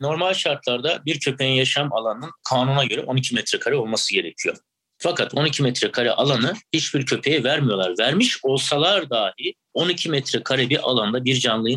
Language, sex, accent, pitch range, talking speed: Turkish, male, native, 120-155 Hz, 145 wpm